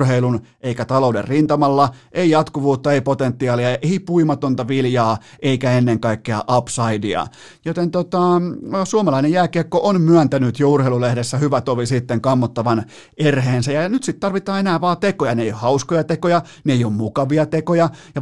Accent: native